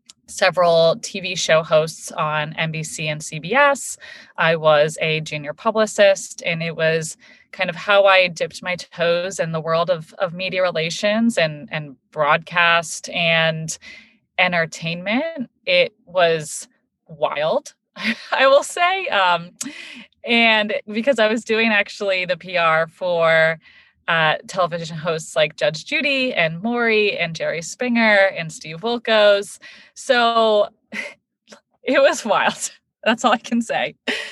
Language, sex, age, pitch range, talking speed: English, female, 30-49, 165-225 Hz, 130 wpm